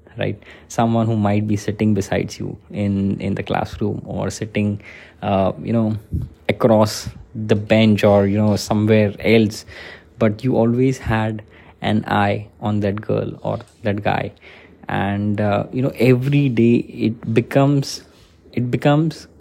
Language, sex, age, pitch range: English, male, 20-39, 105-125 Hz